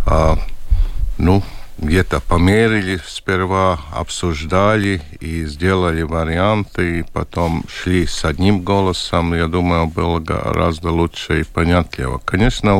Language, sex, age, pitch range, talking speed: Russian, male, 50-69, 80-95 Hz, 110 wpm